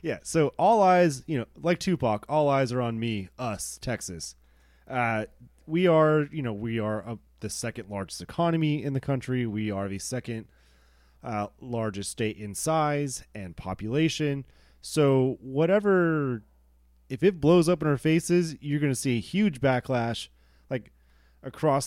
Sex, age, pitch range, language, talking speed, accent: male, 30-49, 105-145 Hz, English, 160 wpm, American